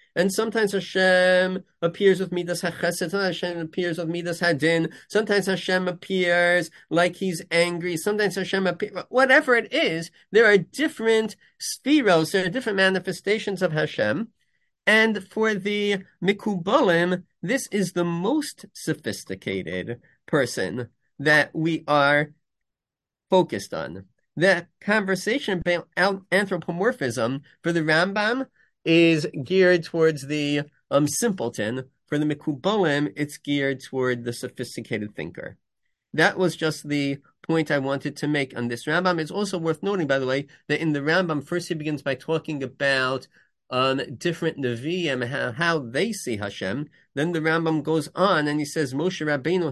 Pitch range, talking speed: 145-190 Hz, 145 wpm